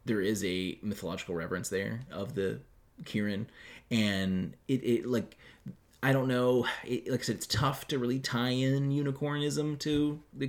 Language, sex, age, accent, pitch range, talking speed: English, male, 30-49, American, 95-125 Hz, 165 wpm